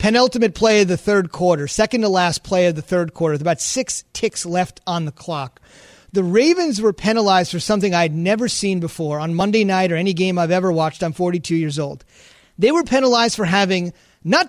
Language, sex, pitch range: English, male, 185-250 Hz